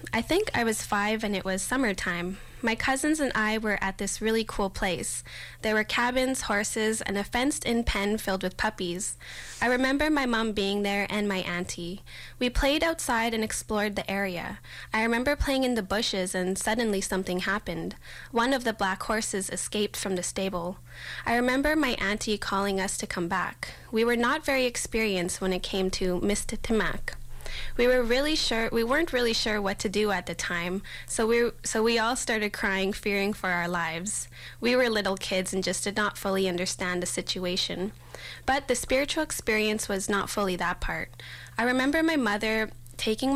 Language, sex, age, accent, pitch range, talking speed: English, female, 10-29, American, 190-235 Hz, 185 wpm